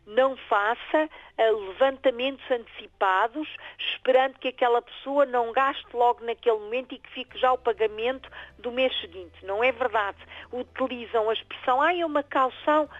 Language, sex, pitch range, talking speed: Portuguese, female, 220-290 Hz, 150 wpm